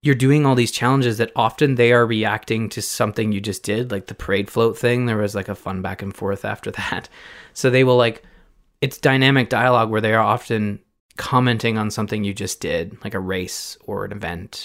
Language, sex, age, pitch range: English, male, 20-39, 105-125 Hz